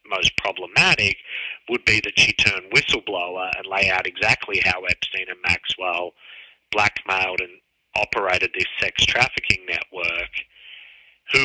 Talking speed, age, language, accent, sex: 125 wpm, 30-49, English, Australian, male